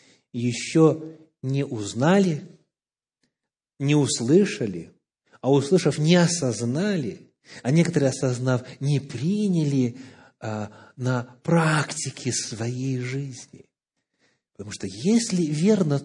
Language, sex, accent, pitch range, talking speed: Russian, male, native, 120-185 Hz, 80 wpm